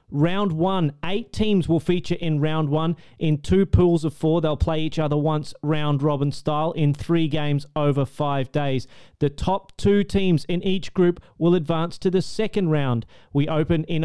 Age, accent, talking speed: 30-49, Australian, 185 wpm